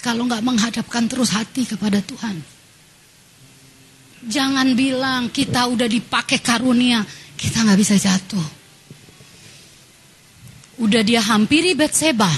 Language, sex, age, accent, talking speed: Indonesian, female, 30-49, native, 100 wpm